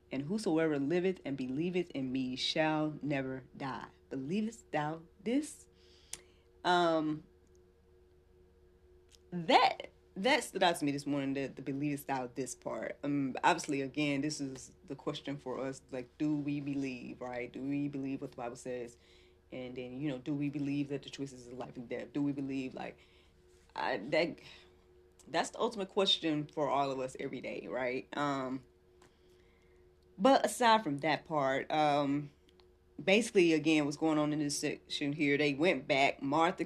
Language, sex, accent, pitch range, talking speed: English, female, American, 120-160 Hz, 165 wpm